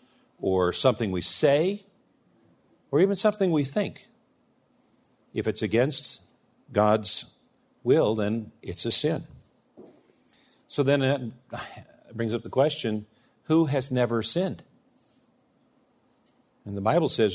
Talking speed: 115 wpm